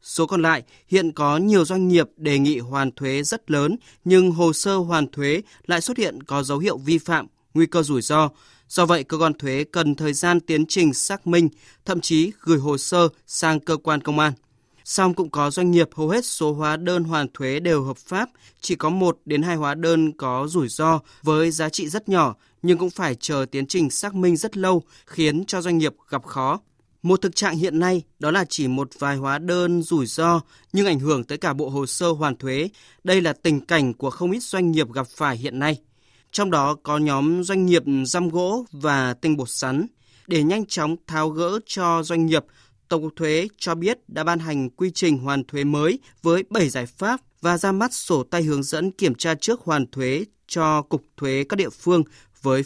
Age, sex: 20-39, male